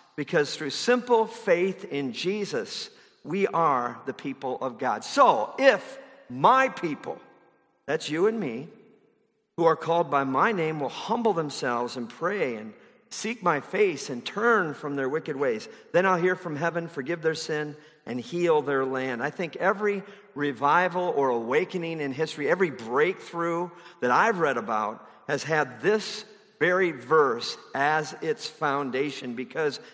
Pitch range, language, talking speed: 140-210 Hz, English, 150 wpm